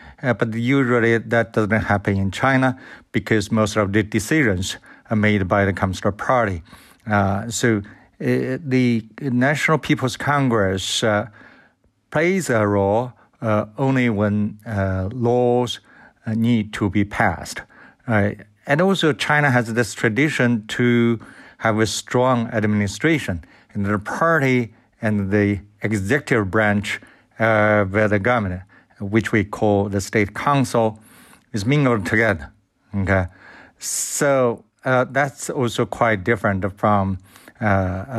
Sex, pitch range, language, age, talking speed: male, 105-120 Hz, English, 60-79, 125 wpm